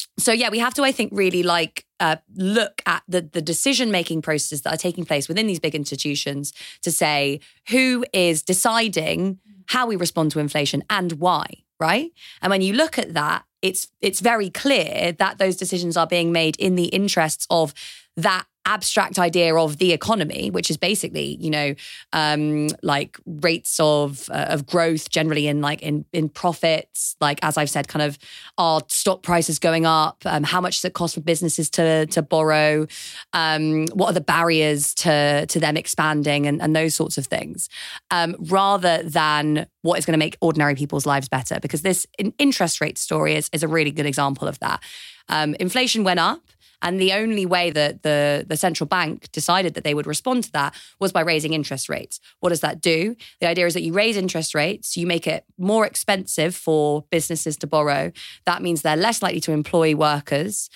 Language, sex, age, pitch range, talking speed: English, female, 20-39, 150-185 Hz, 195 wpm